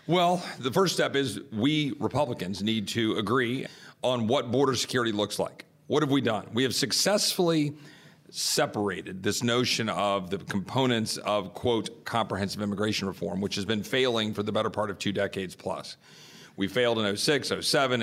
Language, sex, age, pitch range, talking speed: English, male, 40-59, 110-145 Hz, 170 wpm